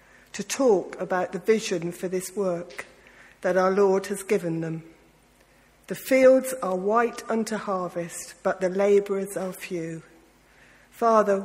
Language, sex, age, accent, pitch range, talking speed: English, female, 50-69, British, 175-210 Hz, 135 wpm